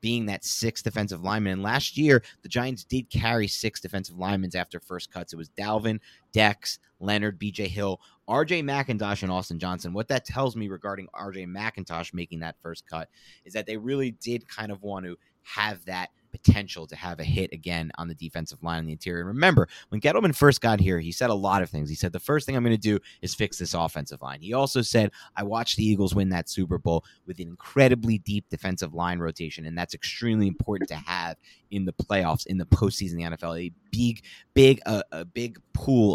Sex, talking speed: male, 215 wpm